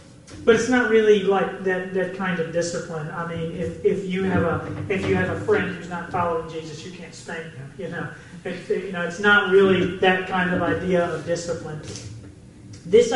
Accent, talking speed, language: American, 210 wpm, English